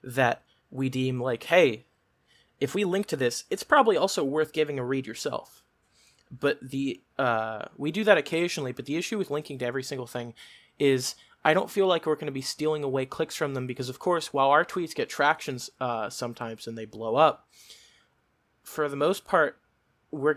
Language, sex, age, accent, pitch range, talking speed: English, male, 20-39, American, 125-150 Hz, 195 wpm